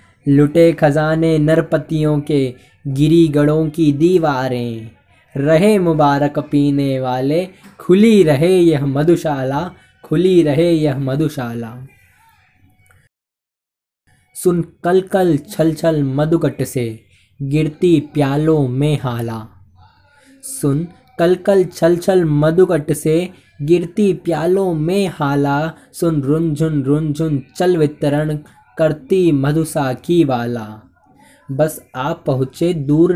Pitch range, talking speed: 135-175 Hz, 90 wpm